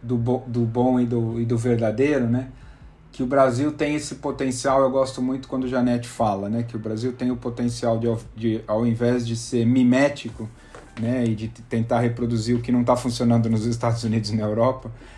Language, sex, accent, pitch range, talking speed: Portuguese, male, Brazilian, 115-130 Hz, 205 wpm